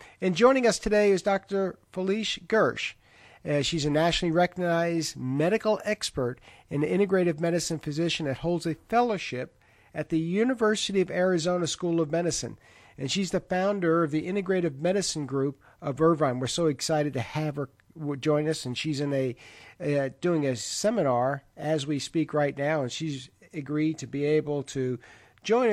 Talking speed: 160 wpm